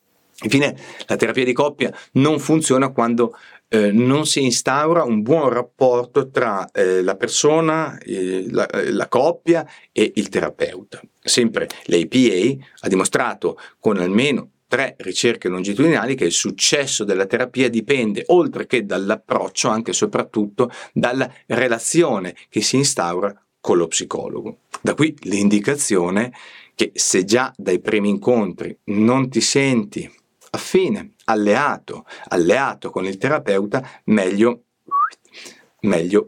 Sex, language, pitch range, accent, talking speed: male, Italian, 110-155 Hz, native, 125 wpm